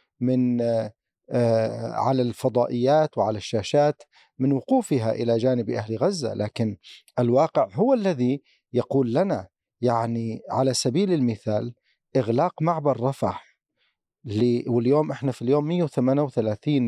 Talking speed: 105 wpm